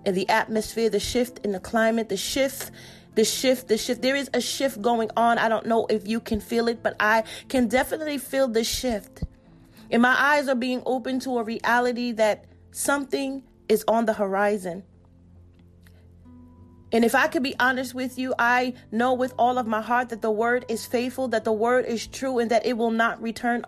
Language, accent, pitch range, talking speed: English, American, 220-270 Hz, 205 wpm